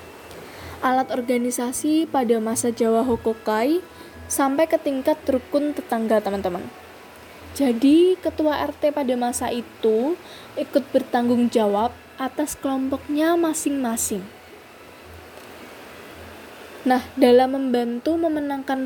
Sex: female